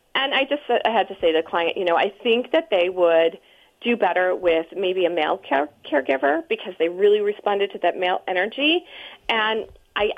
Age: 40-59